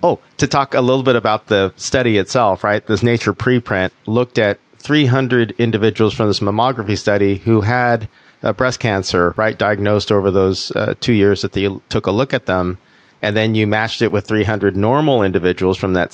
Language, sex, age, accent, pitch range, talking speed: English, male, 40-59, American, 100-125 Hz, 195 wpm